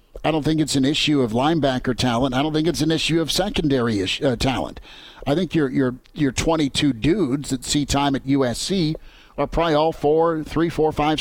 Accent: American